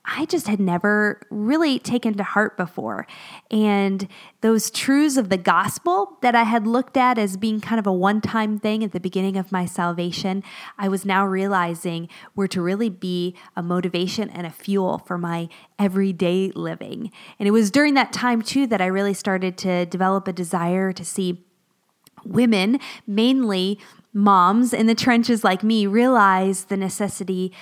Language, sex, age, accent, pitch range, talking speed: English, female, 20-39, American, 190-235 Hz, 170 wpm